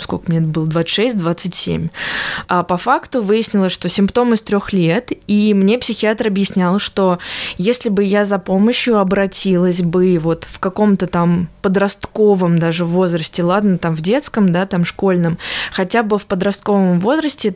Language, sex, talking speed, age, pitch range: Russian, female, 155 wpm, 20-39, 180-220 Hz